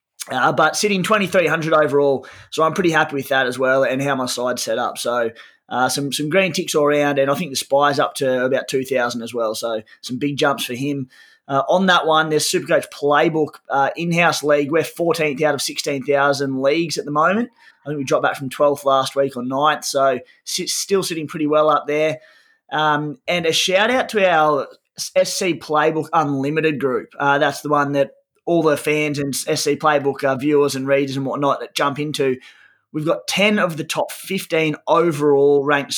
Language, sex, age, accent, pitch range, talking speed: English, male, 20-39, Australian, 140-165 Hz, 200 wpm